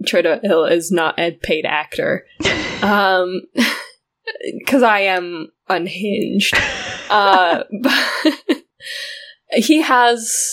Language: English